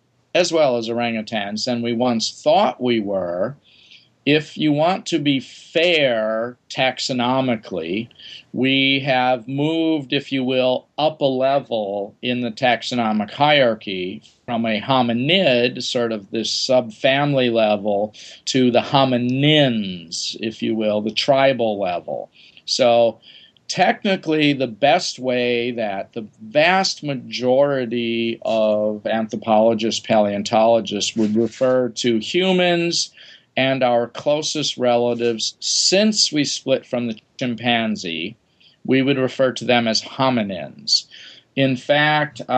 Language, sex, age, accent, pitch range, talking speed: English, male, 50-69, American, 110-135 Hz, 115 wpm